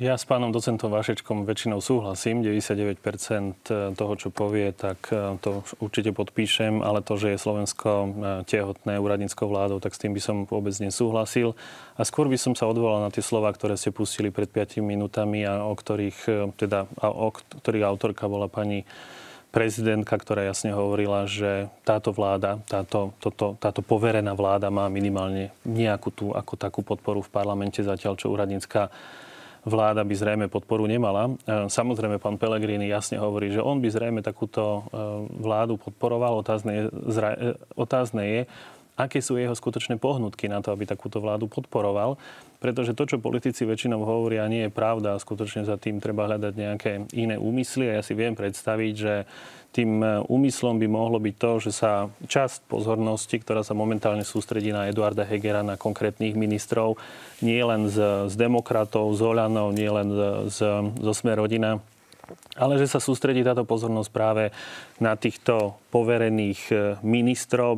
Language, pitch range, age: Slovak, 105-115 Hz, 30-49